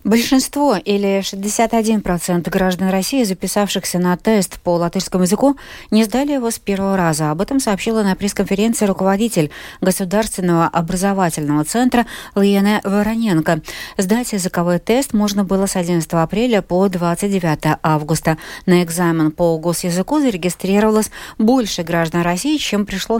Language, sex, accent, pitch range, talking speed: Russian, female, native, 170-220 Hz, 125 wpm